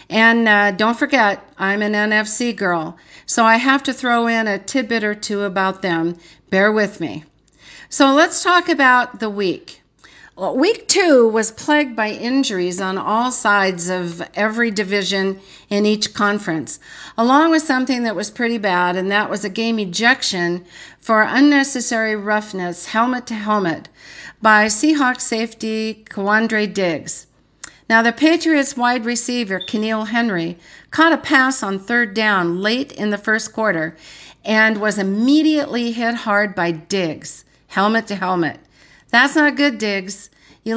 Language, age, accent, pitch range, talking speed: English, 50-69, American, 190-250 Hz, 145 wpm